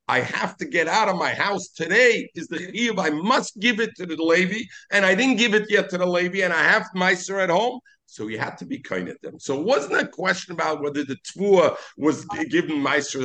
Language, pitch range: English, 135-200 Hz